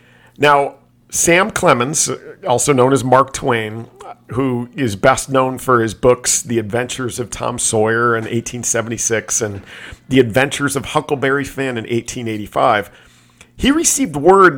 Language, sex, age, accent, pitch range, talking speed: English, male, 50-69, American, 110-135 Hz, 135 wpm